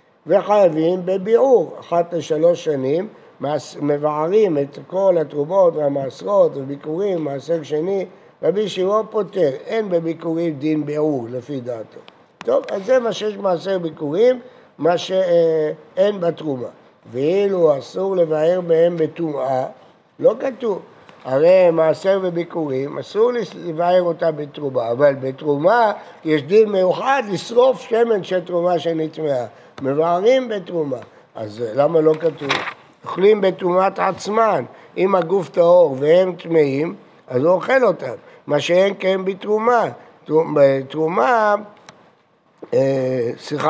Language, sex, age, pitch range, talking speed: Hebrew, male, 60-79, 150-205 Hz, 110 wpm